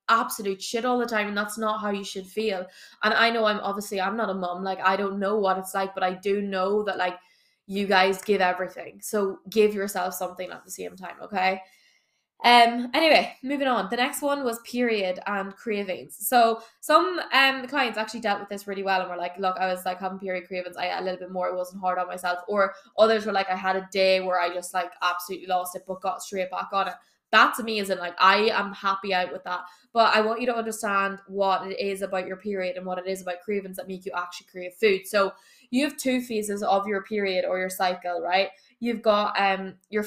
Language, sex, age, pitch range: English, female, 10-29, 185-215 Hz